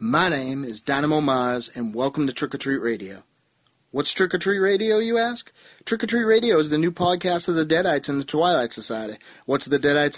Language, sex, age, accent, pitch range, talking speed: English, male, 30-49, American, 155-210 Hz, 220 wpm